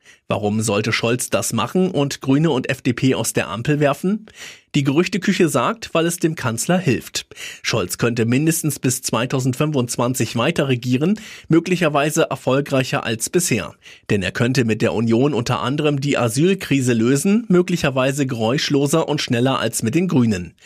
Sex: male